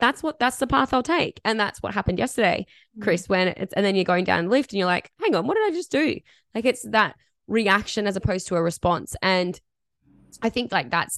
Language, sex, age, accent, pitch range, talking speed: English, female, 10-29, Australian, 175-215 Hz, 245 wpm